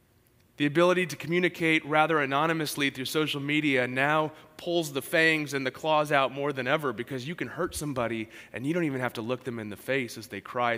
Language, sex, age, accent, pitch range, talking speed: English, male, 30-49, American, 120-165 Hz, 215 wpm